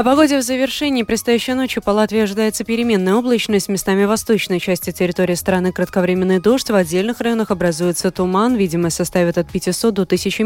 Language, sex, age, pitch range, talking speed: Russian, female, 20-39, 175-225 Hz, 160 wpm